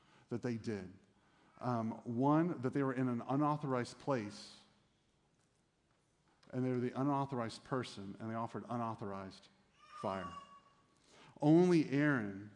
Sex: male